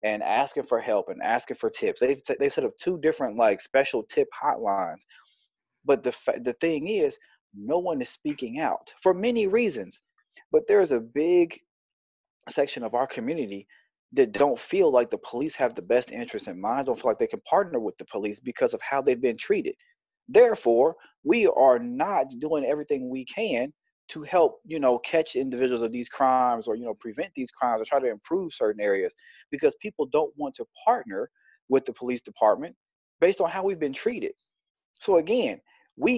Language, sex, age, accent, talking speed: English, male, 30-49, American, 190 wpm